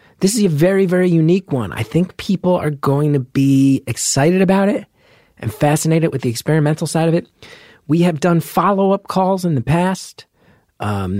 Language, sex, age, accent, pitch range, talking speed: English, male, 30-49, American, 110-155 Hz, 180 wpm